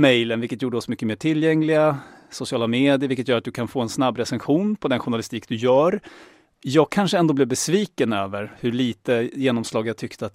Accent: Swedish